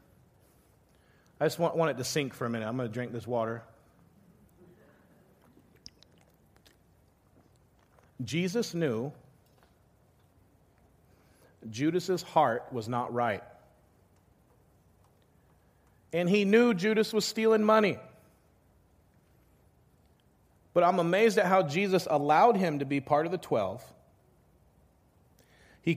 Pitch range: 120-170 Hz